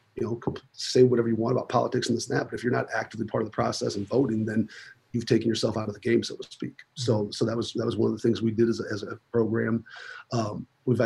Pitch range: 110-120 Hz